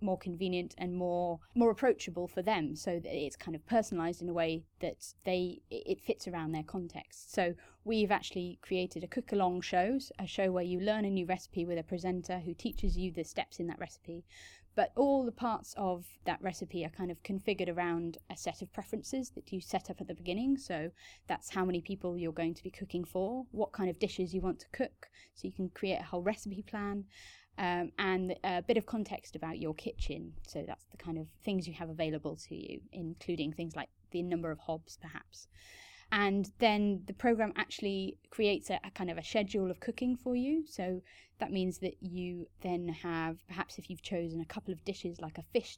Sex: female